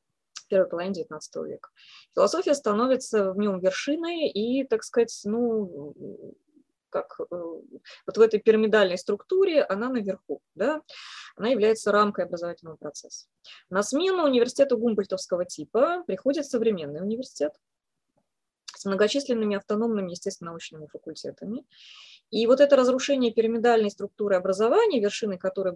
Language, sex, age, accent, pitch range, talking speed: Russian, female, 20-39, native, 185-255 Hz, 120 wpm